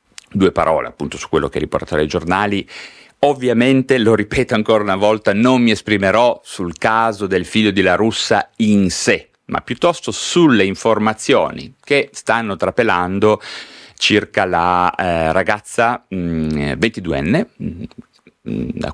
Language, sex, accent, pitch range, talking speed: Italian, male, native, 80-105 Hz, 135 wpm